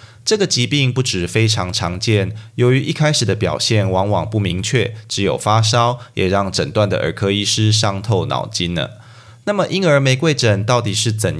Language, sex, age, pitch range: Chinese, male, 20-39, 100-125 Hz